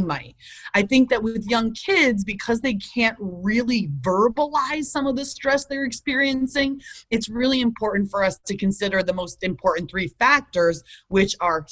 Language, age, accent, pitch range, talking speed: English, 30-49, American, 180-225 Hz, 165 wpm